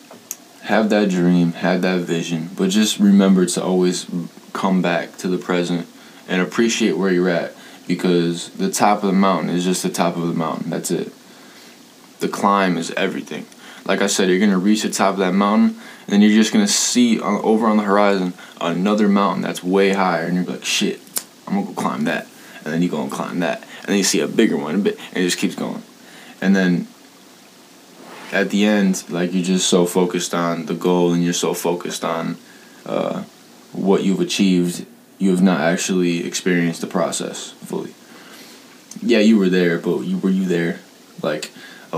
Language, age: English, 20-39